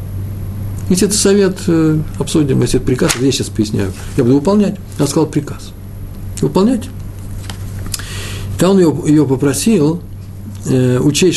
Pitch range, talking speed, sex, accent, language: 100-150 Hz, 115 wpm, male, native, Russian